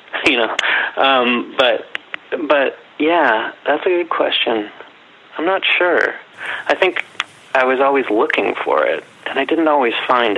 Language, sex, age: English, male, 30-49